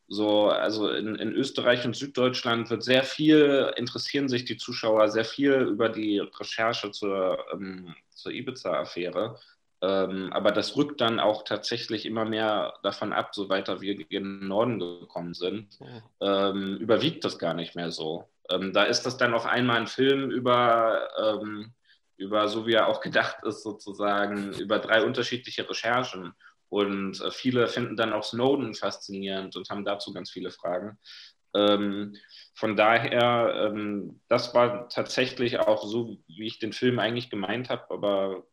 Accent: German